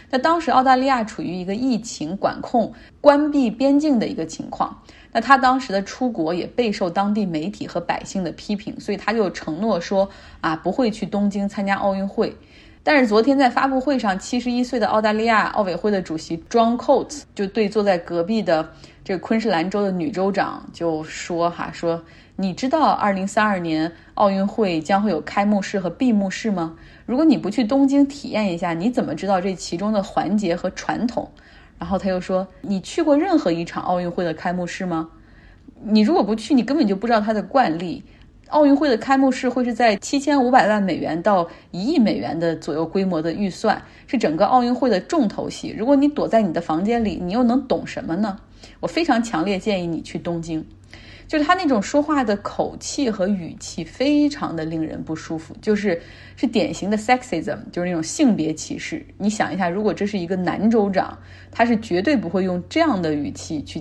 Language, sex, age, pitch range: Chinese, female, 20-39, 175-255 Hz